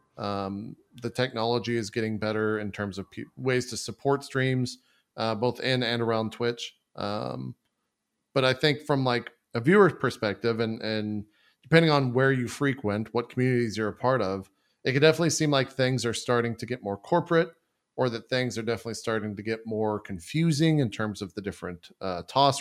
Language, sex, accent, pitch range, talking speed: English, male, American, 105-125 Hz, 185 wpm